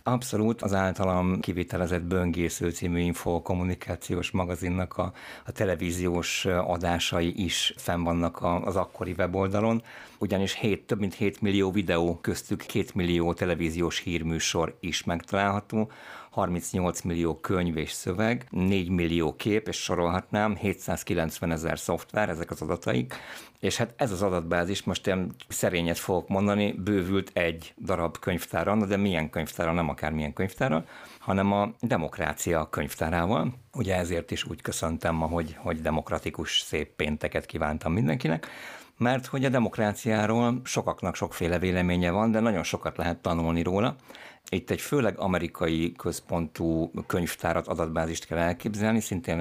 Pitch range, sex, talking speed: 85-100 Hz, male, 130 wpm